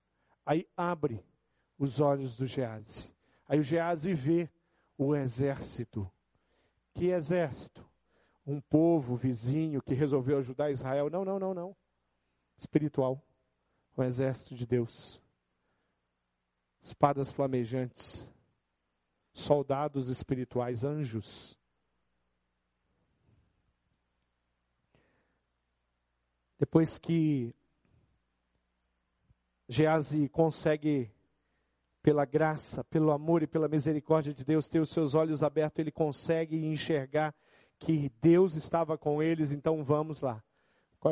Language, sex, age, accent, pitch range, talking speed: Portuguese, male, 50-69, Brazilian, 110-155 Hz, 100 wpm